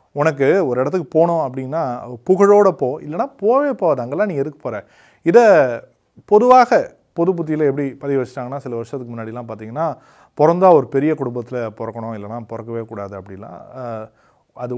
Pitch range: 120-165 Hz